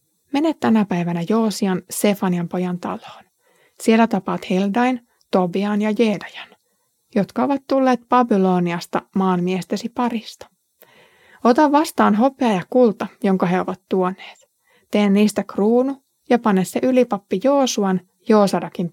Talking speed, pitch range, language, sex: 115 wpm, 185-240 Hz, Finnish, female